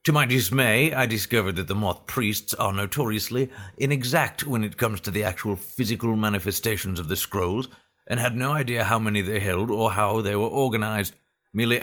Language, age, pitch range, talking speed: English, 50-69, 95-120 Hz, 185 wpm